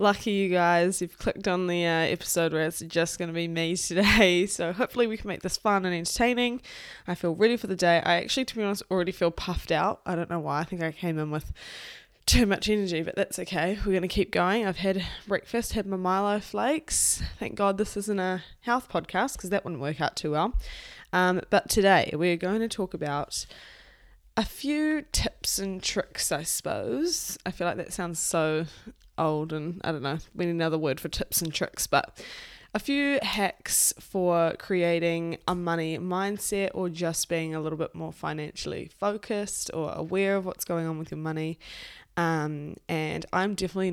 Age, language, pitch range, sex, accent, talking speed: 10-29, English, 165-195 Hz, female, Australian, 200 wpm